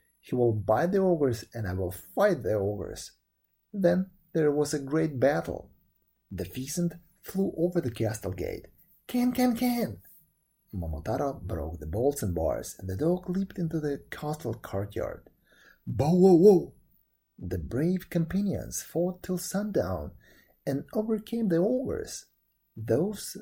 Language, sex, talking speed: English, male, 140 wpm